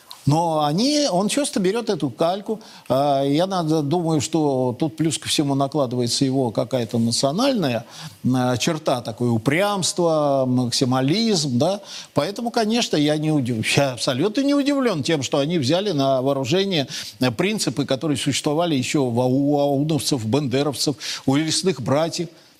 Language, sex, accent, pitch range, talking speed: Russian, male, native, 140-195 Hz, 125 wpm